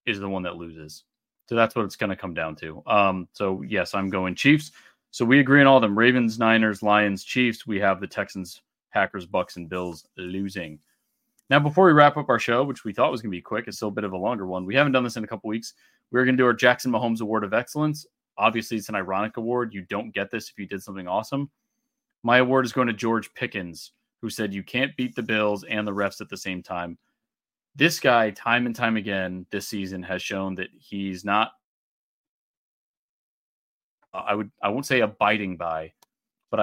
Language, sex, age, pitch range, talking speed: English, male, 30-49, 95-120 Hz, 230 wpm